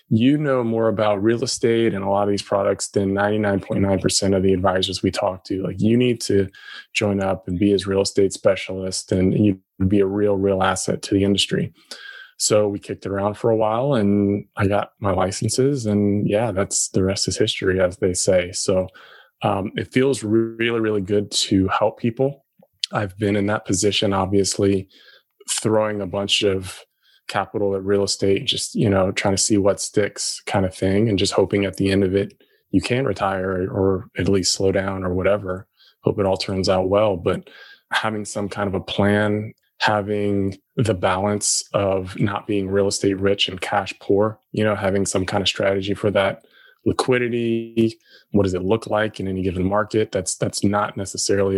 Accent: American